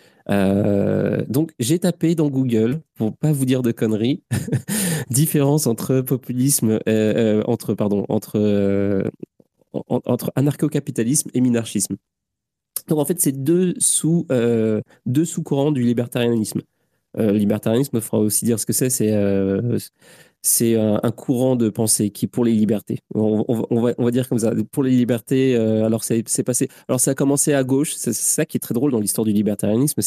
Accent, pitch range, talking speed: French, 105-130 Hz, 185 wpm